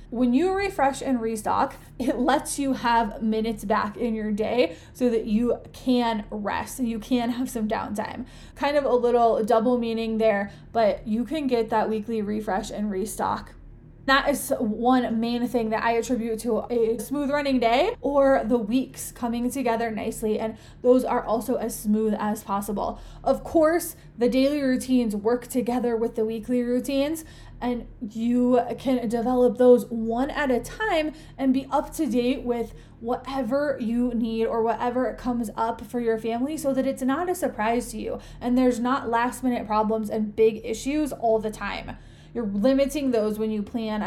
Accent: American